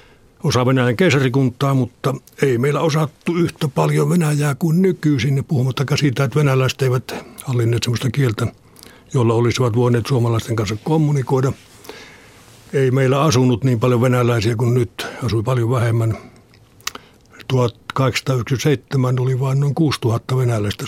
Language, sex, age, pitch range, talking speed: Finnish, male, 60-79, 120-145 Hz, 125 wpm